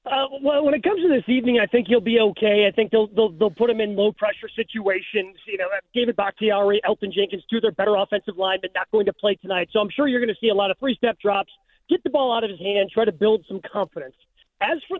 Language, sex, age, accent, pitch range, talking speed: English, male, 30-49, American, 200-250 Hz, 270 wpm